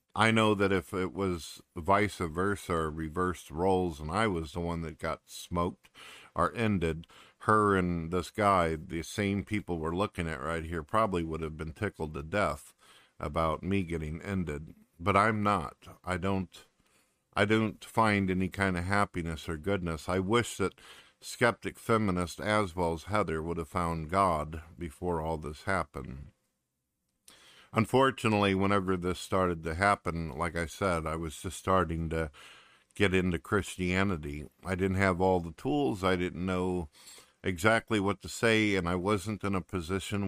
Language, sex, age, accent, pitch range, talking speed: English, male, 50-69, American, 80-100 Hz, 160 wpm